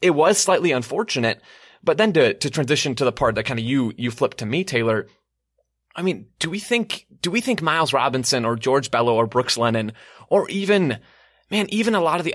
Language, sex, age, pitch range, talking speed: English, male, 20-39, 120-170 Hz, 220 wpm